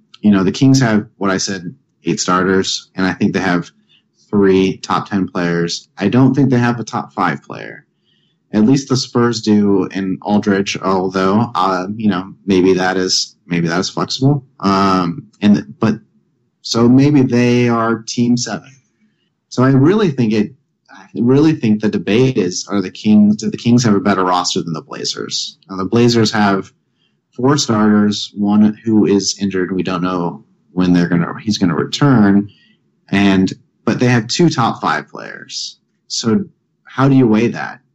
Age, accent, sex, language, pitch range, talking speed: 30-49, American, male, English, 95-120 Hz, 175 wpm